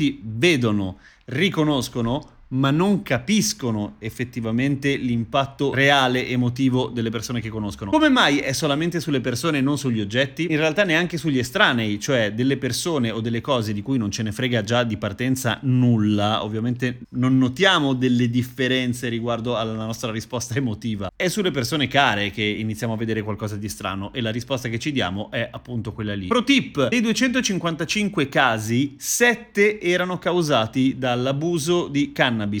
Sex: male